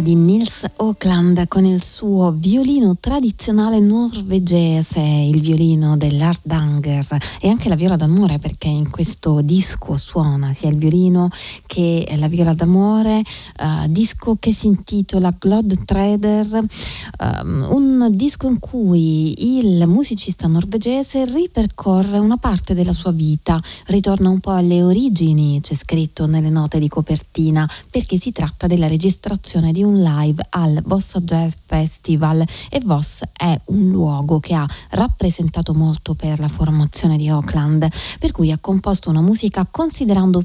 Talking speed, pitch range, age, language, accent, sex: 140 wpm, 155-210 Hz, 30-49, Italian, native, female